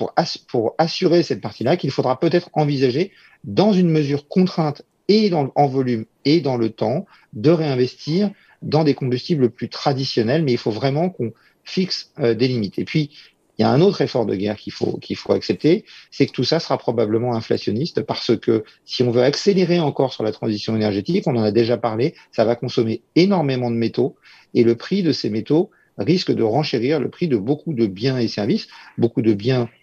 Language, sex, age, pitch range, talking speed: French, male, 40-59, 115-155 Hz, 200 wpm